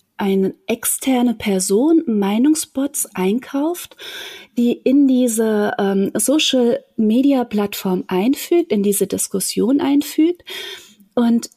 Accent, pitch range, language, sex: German, 200-265 Hz, German, female